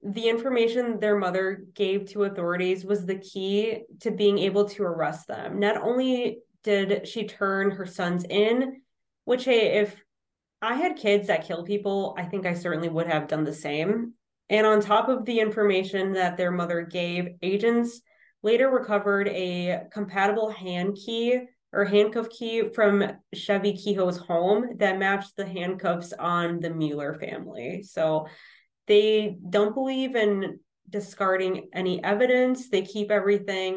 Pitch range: 180-215 Hz